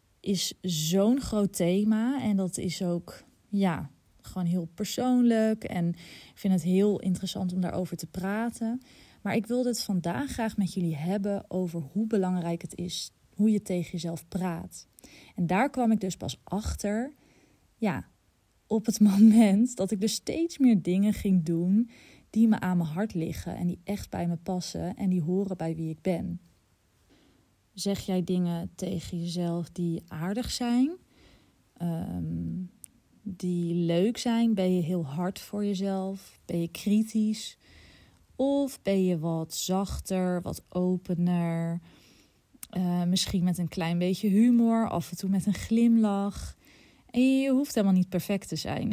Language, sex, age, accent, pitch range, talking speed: Dutch, female, 20-39, Dutch, 175-215 Hz, 155 wpm